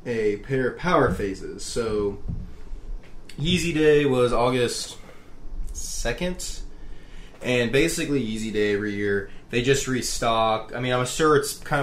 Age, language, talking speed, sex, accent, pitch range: 20-39, English, 130 wpm, male, American, 100-125 Hz